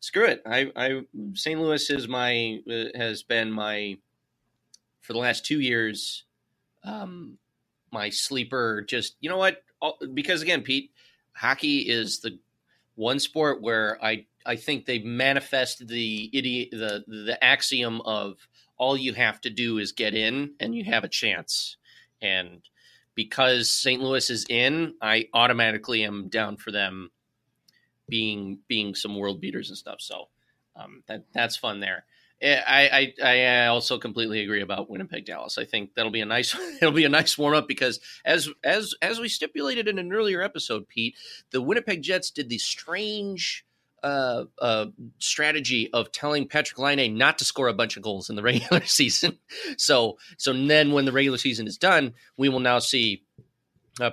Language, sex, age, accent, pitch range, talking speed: English, male, 30-49, American, 110-140 Hz, 170 wpm